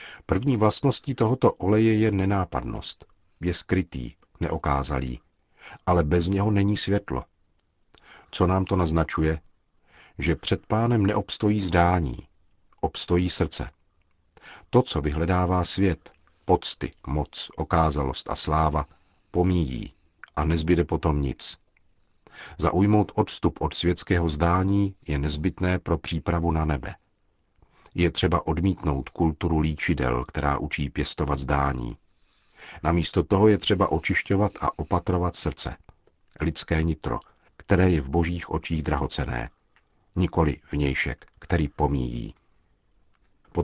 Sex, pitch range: male, 80-100 Hz